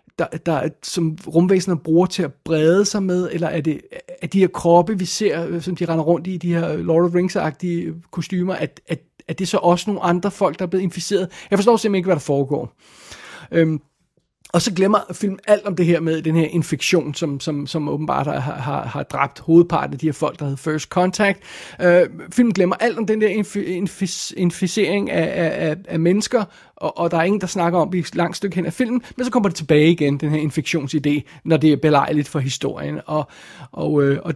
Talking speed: 210 wpm